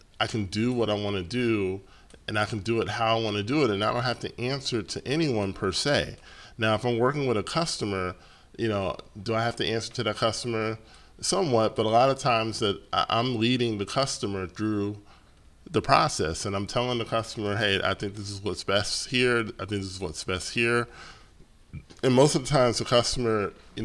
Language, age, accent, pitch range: English, 10-29, American, 95-115 Hz